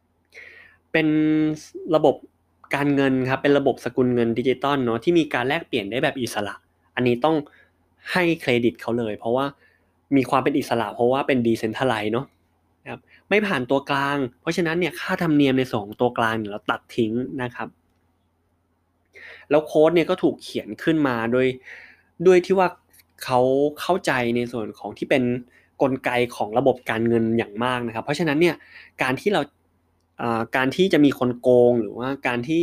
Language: Thai